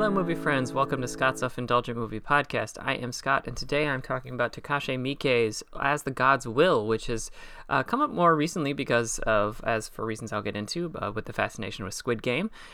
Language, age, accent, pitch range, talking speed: English, 30-49, American, 115-155 Hz, 215 wpm